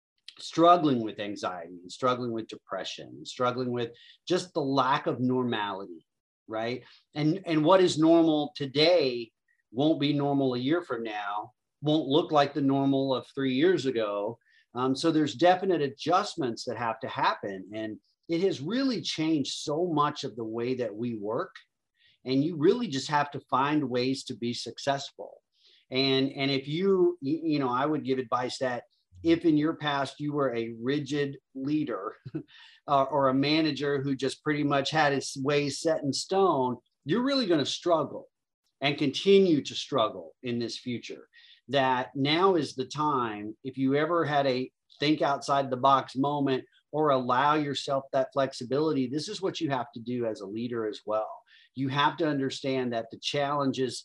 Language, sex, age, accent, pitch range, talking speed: English, male, 40-59, American, 125-150 Hz, 175 wpm